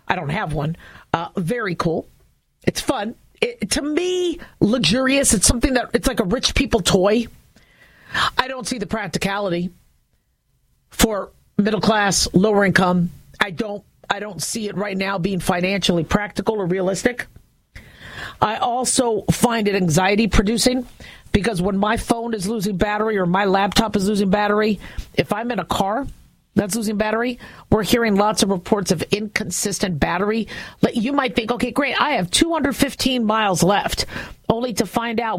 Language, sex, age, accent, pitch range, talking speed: English, female, 40-59, American, 195-245 Hz, 155 wpm